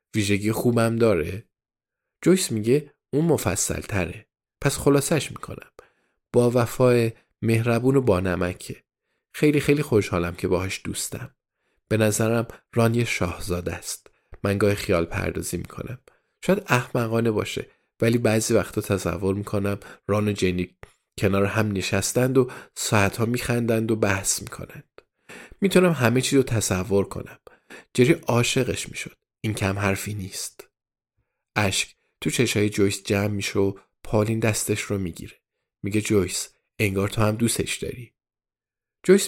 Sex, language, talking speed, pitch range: male, Persian, 130 wpm, 100-120 Hz